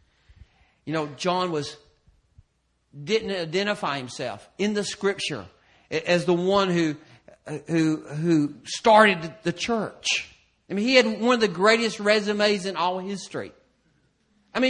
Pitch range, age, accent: 155-240 Hz, 40-59, American